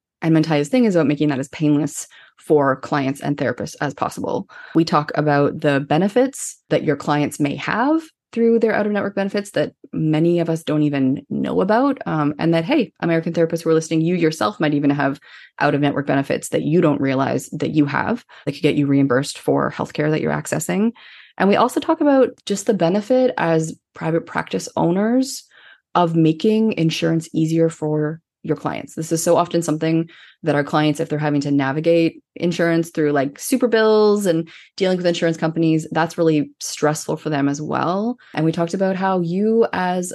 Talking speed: 190 wpm